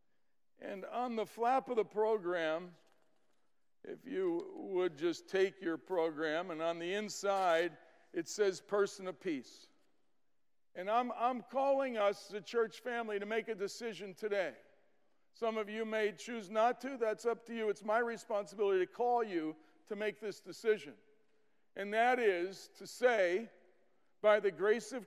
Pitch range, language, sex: 190-235 Hz, English, male